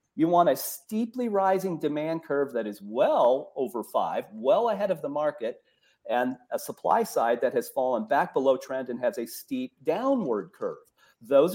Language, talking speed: English, 175 wpm